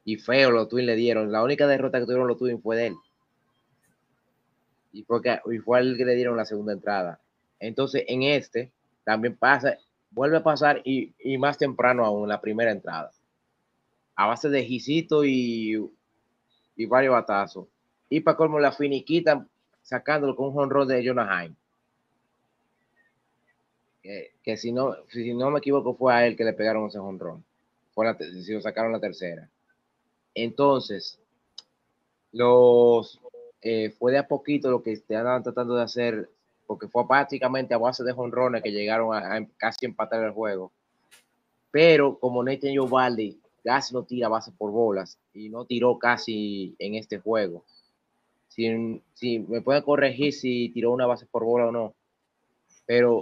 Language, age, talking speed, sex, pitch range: Spanish, 30-49, 165 wpm, male, 110-135 Hz